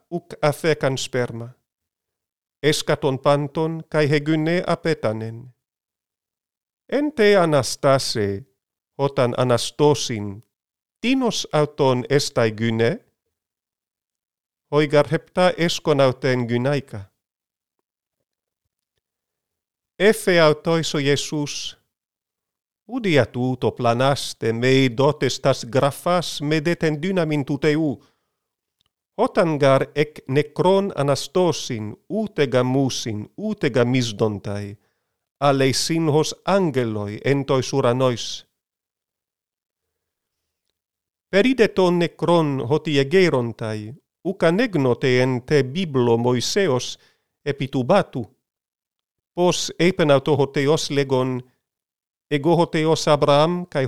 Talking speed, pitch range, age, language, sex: 65 wpm, 125-160 Hz, 50-69, Greek, male